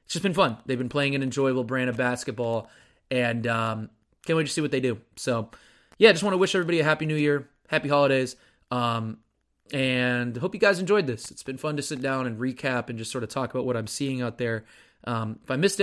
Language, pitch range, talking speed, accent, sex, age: English, 120-150 Hz, 245 wpm, American, male, 20-39